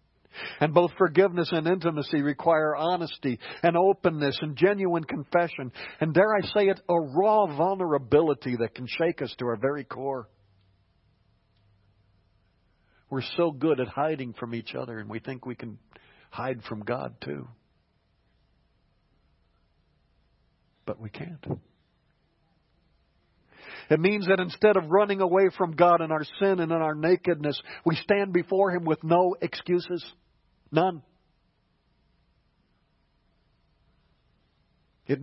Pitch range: 125-175 Hz